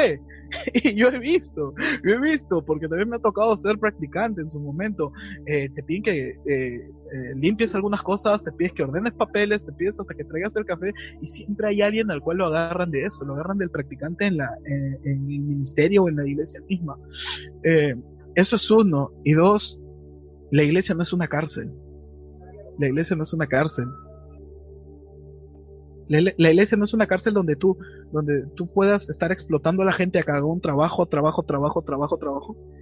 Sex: male